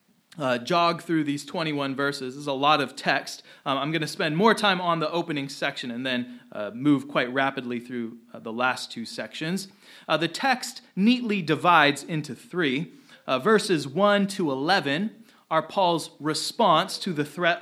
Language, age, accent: English, 30-49, American